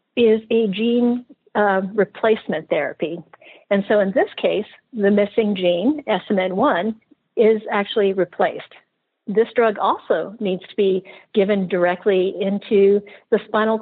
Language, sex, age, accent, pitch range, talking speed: English, female, 50-69, American, 185-220 Hz, 125 wpm